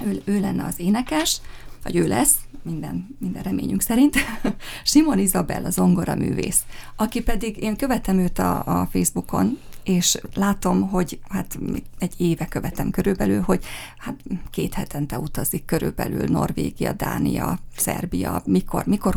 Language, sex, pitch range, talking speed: Hungarian, female, 180-210 Hz, 140 wpm